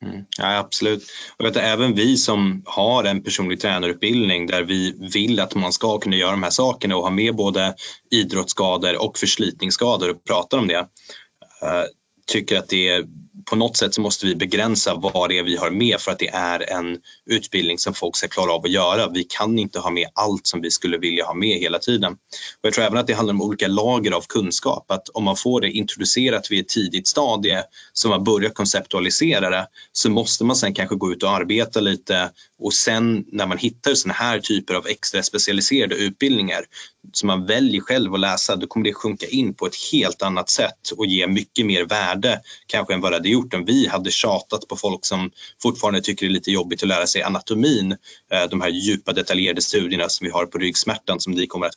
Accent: native